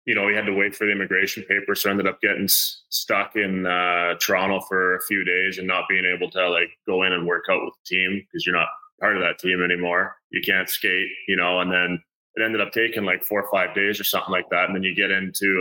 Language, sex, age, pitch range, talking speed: English, male, 20-39, 90-100 Hz, 275 wpm